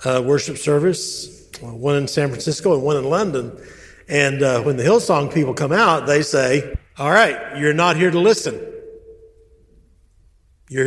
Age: 60-79